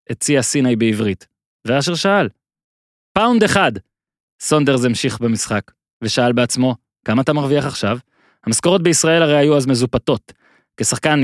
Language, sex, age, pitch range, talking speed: Hebrew, male, 30-49, 130-195 Hz, 125 wpm